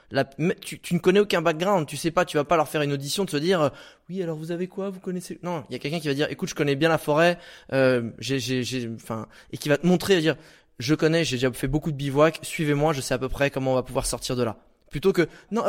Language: French